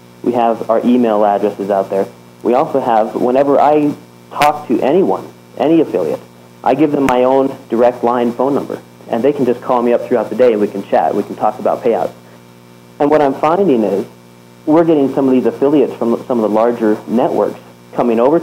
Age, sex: 40-59, male